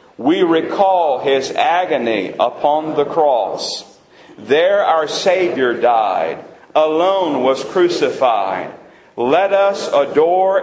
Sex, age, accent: male, 50-69, American